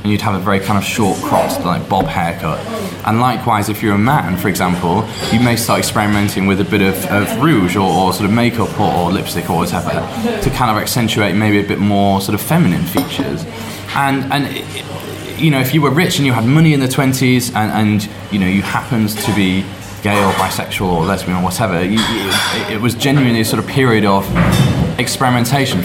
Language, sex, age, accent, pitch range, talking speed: English, male, 20-39, British, 95-125 Hz, 220 wpm